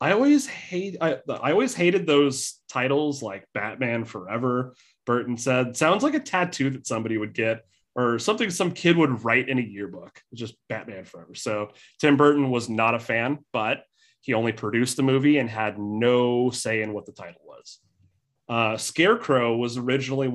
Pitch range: 115-145 Hz